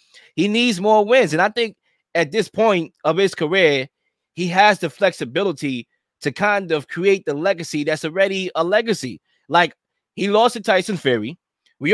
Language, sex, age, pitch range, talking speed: English, male, 20-39, 155-200 Hz, 170 wpm